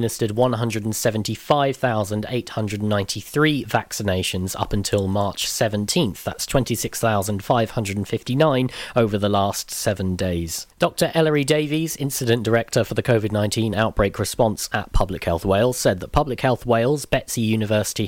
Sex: male